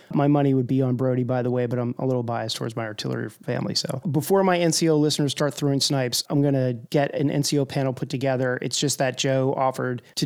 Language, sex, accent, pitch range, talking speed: English, male, American, 125-145 Hz, 240 wpm